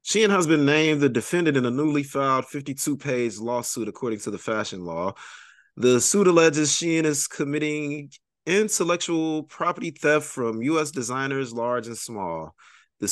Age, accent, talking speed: 30-49, American, 150 wpm